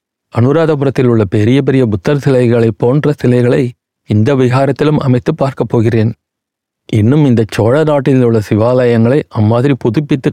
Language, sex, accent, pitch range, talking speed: Tamil, male, native, 115-140 Hz, 115 wpm